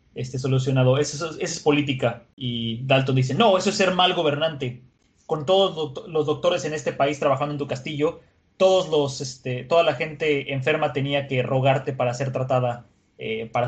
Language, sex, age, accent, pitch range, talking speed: Spanish, male, 20-39, Mexican, 130-150 Hz, 195 wpm